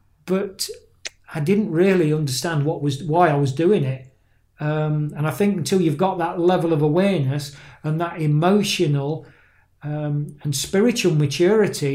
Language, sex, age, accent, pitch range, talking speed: English, male, 40-59, British, 140-170 Hz, 150 wpm